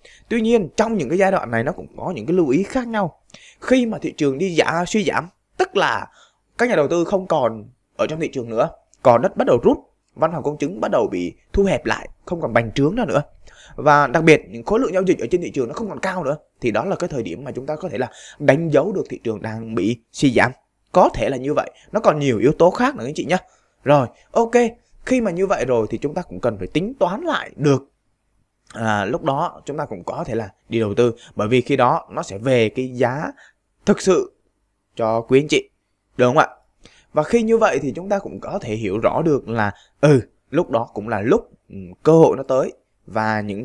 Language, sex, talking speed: Vietnamese, male, 255 wpm